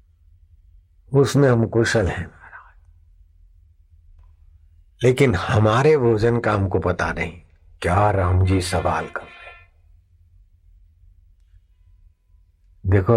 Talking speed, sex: 80 wpm, male